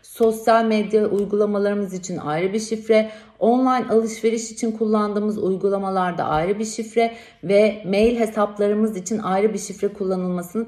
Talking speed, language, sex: 130 wpm, Turkish, female